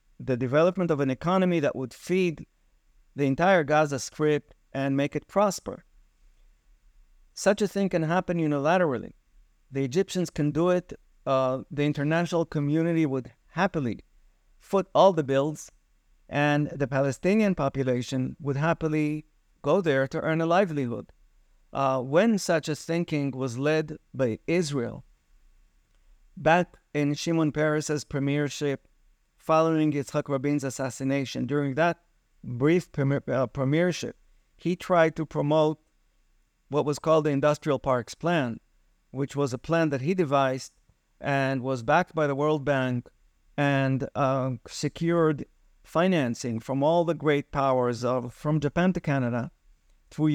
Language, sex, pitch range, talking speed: English, male, 130-160 Hz, 135 wpm